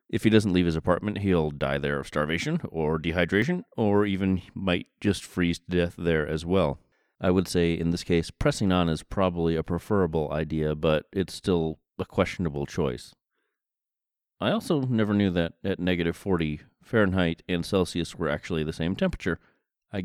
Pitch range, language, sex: 80-95 Hz, English, male